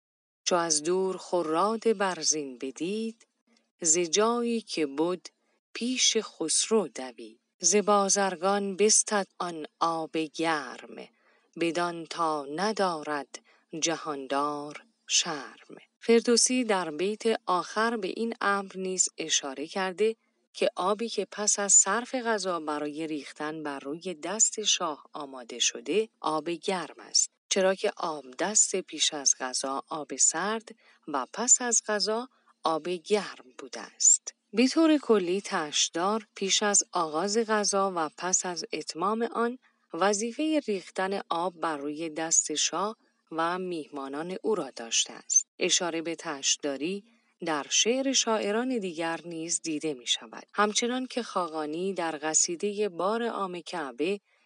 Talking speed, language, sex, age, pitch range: 120 wpm, Persian, female, 40-59, 160-215 Hz